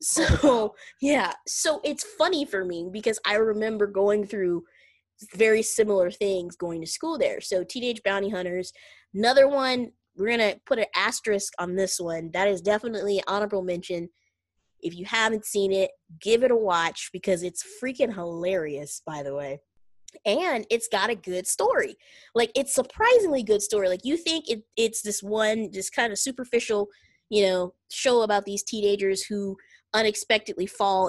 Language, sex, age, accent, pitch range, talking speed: English, female, 20-39, American, 185-235 Hz, 165 wpm